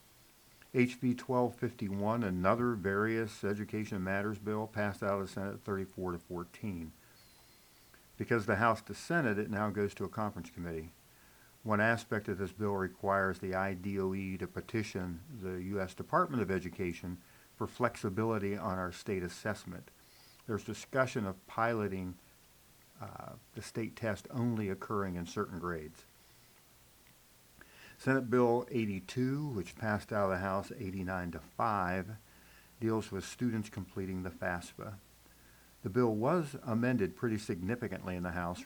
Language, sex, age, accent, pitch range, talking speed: English, male, 50-69, American, 90-115 Hz, 135 wpm